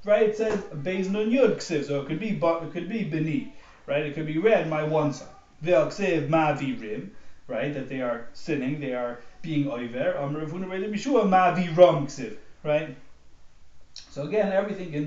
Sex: male